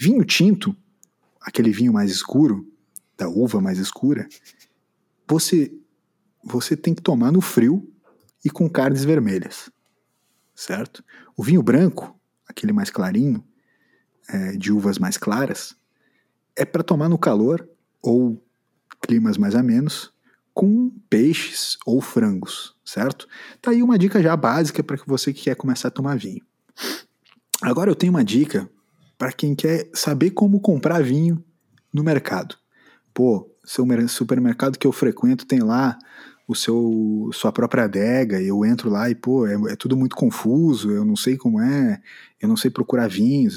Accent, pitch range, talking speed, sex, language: Brazilian, 125-195 Hz, 150 wpm, male, Portuguese